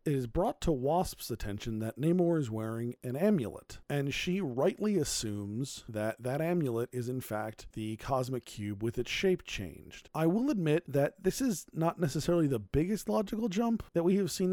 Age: 40-59